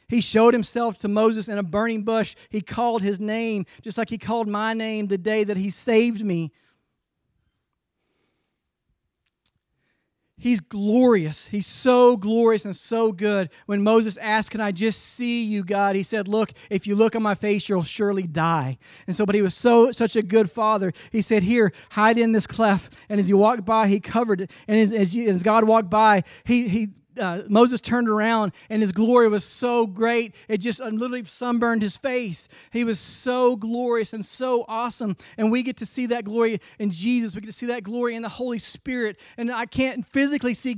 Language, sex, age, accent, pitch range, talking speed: English, male, 40-59, American, 195-230 Hz, 200 wpm